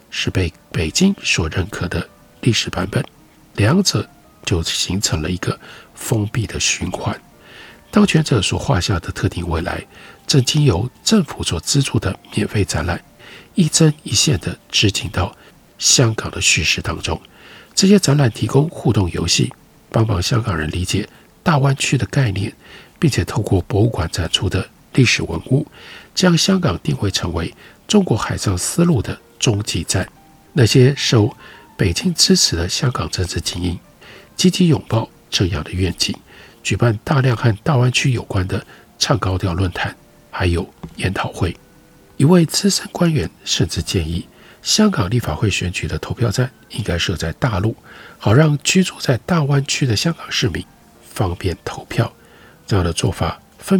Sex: male